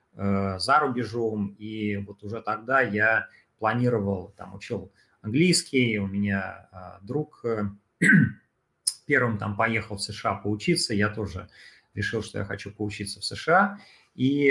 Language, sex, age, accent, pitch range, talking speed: Russian, male, 30-49, native, 100-125 Hz, 130 wpm